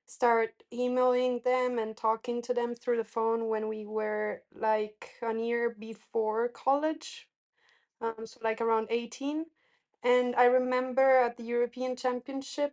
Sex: female